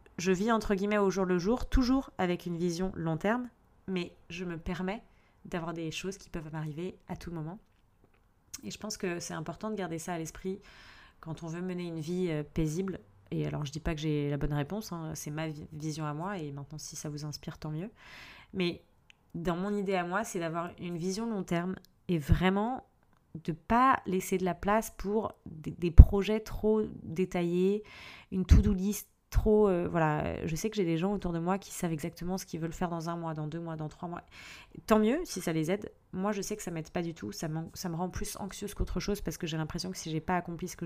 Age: 30-49